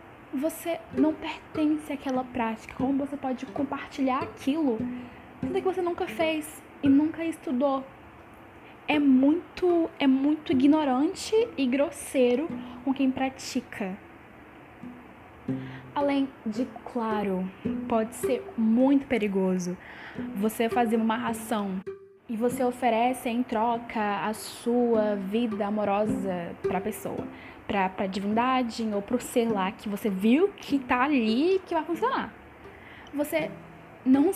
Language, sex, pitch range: Portuguese, female, 220-290 Hz